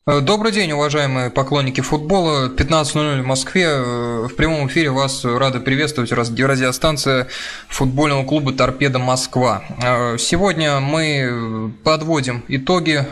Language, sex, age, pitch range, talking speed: Russian, male, 20-39, 120-145 Hz, 105 wpm